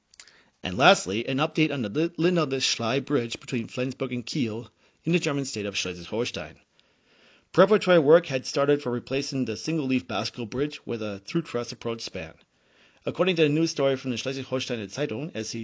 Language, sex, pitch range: English, male, 115-145 Hz